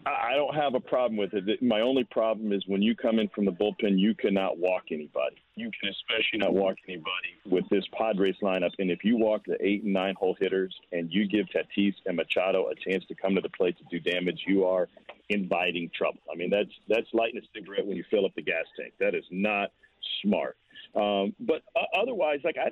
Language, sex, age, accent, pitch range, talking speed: English, male, 50-69, American, 100-160 Hz, 225 wpm